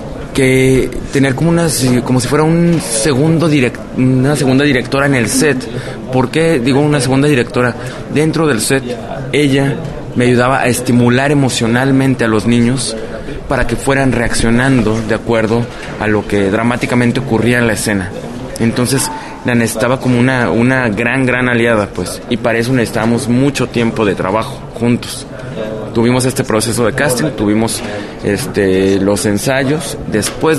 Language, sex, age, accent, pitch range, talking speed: English, male, 20-39, Mexican, 115-135 Hz, 150 wpm